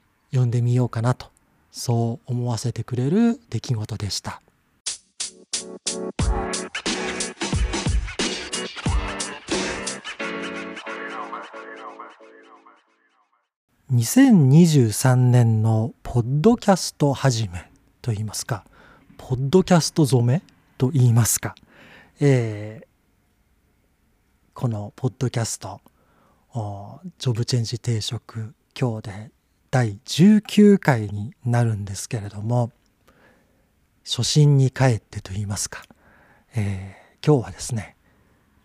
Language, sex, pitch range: Japanese, male, 105-145 Hz